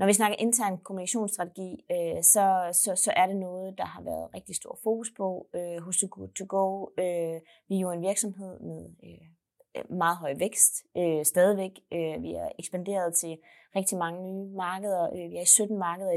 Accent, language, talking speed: native, Danish, 165 wpm